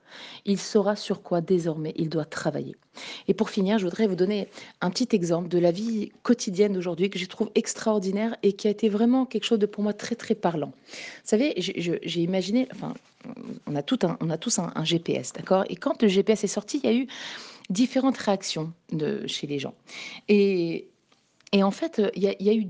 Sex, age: female, 30-49